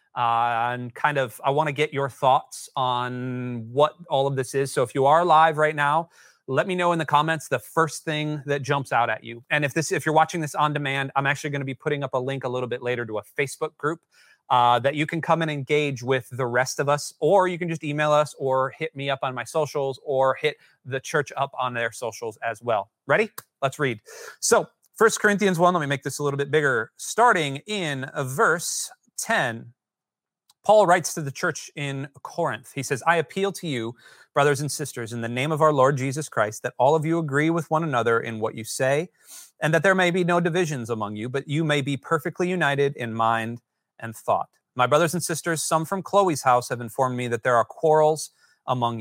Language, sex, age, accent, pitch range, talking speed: English, male, 30-49, American, 130-165 Hz, 230 wpm